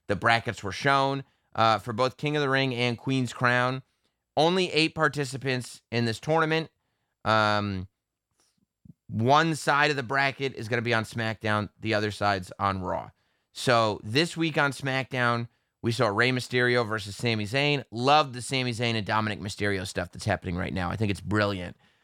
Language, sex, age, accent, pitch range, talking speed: English, male, 30-49, American, 105-135 Hz, 175 wpm